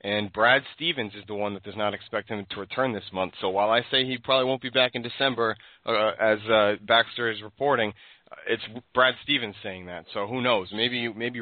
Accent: American